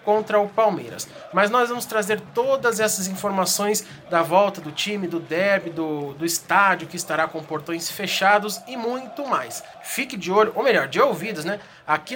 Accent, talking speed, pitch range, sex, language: Brazilian, 180 wpm, 195-240 Hz, male, Portuguese